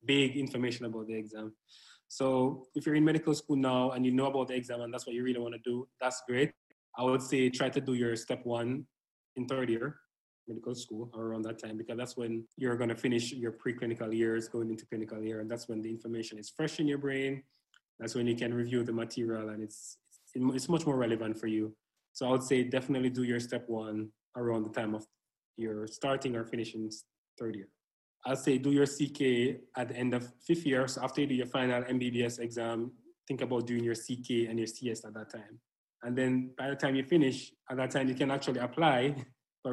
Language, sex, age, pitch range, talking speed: English, male, 20-39, 115-130 Hz, 225 wpm